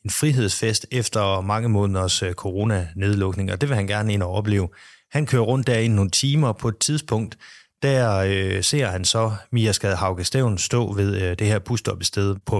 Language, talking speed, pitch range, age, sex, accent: Danish, 185 wpm, 95-125 Hz, 30-49, male, native